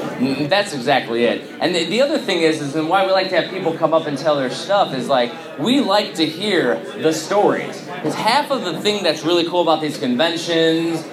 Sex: male